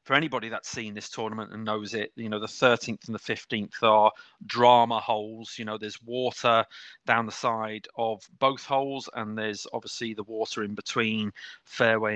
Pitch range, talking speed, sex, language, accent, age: 105-135 Hz, 185 wpm, male, English, British, 30-49